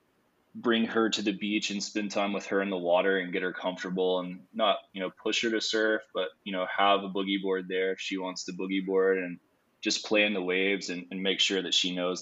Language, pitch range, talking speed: English, 90-100 Hz, 255 wpm